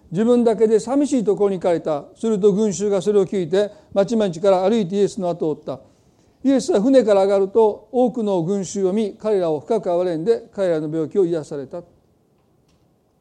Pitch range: 185-230 Hz